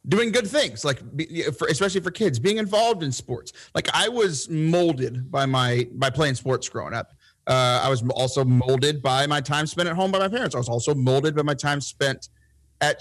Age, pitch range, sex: 30-49, 125-160 Hz, male